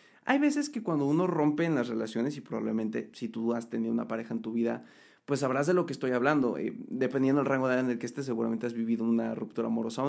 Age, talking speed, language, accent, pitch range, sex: 30-49, 260 wpm, Spanish, Mexican, 120-165 Hz, male